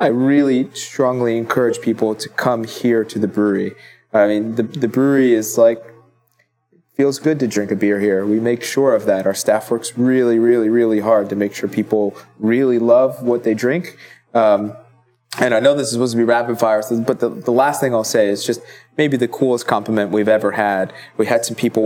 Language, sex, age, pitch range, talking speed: English, male, 20-39, 110-135 Hz, 210 wpm